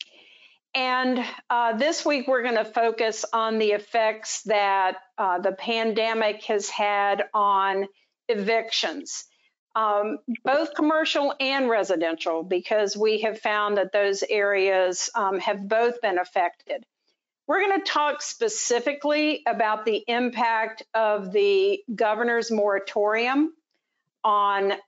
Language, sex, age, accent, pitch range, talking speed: English, female, 50-69, American, 205-255 Hz, 115 wpm